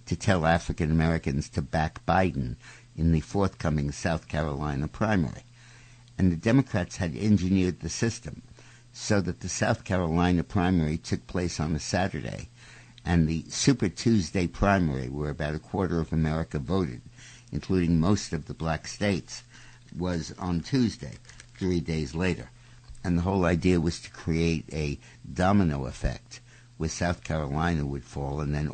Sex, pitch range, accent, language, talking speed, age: male, 75-95 Hz, American, English, 150 wpm, 60-79